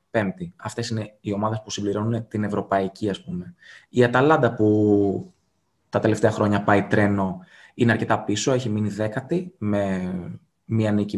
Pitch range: 95-115 Hz